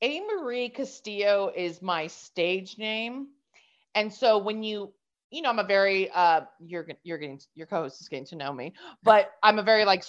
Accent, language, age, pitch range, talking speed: American, English, 30-49, 175-220 Hz, 195 wpm